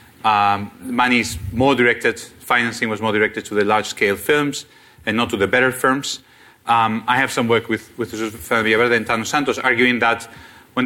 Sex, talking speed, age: male, 205 wpm, 40-59